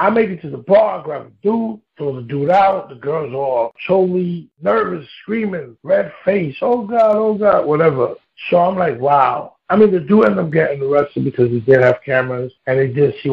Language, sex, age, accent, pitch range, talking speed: English, male, 60-79, American, 135-185 Hz, 210 wpm